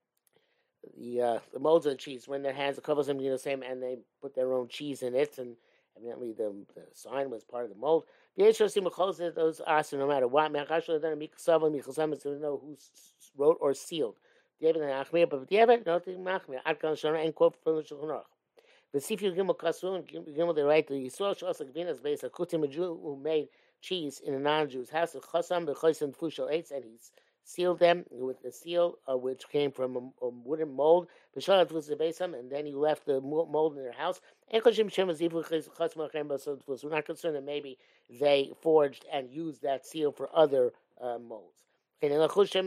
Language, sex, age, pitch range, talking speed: English, male, 50-69, 140-175 Hz, 130 wpm